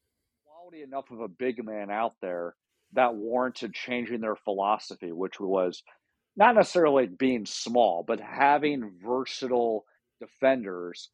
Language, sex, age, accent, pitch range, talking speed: English, male, 50-69, American, 105-125 Hz, 125 wpm